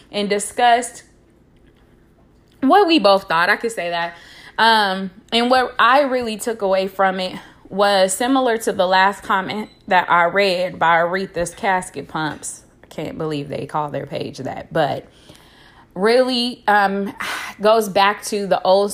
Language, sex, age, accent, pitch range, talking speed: English, female, 20-39, American, 185-225 Hz, 150 wpm